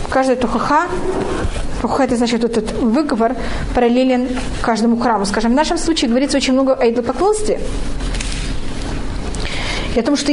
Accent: native